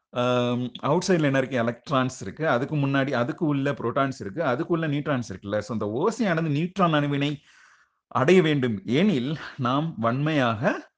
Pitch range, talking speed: 115-155 Hz, 150 wpm